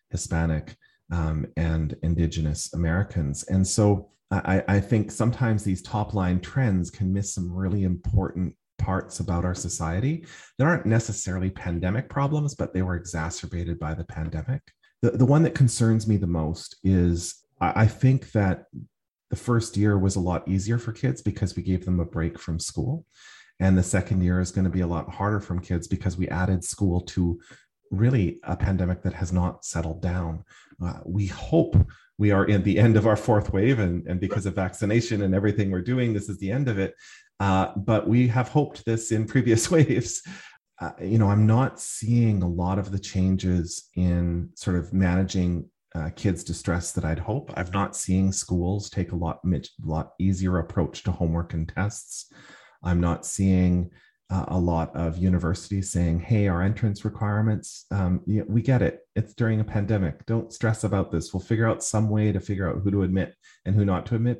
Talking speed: 190 wpm